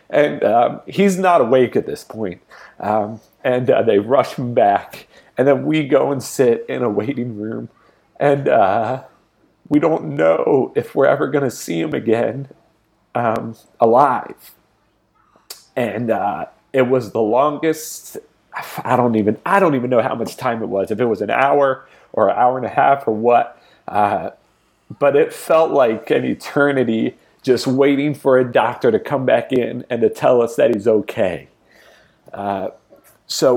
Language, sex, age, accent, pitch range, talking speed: English, male, 40-59, American, 100-135 Hz, 170 wpm